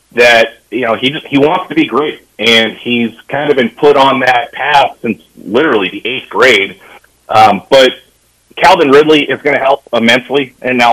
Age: 30-49